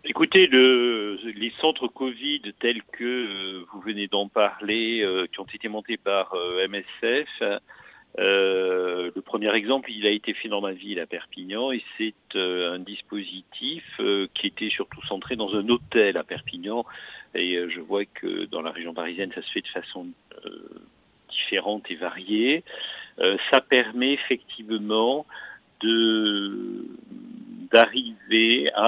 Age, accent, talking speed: 50-69, French, 150 wpm